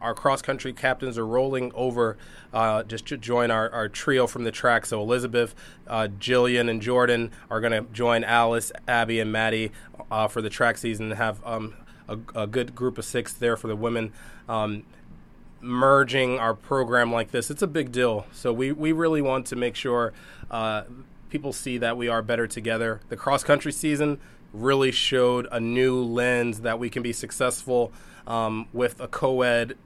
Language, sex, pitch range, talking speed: English, male, 115-130 Hz, 185 wpm